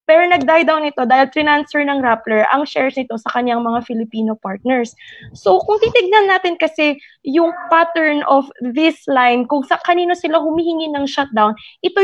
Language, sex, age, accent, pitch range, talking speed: Filipino, female, 20-39, native, 255-335 Hz, 165 wpm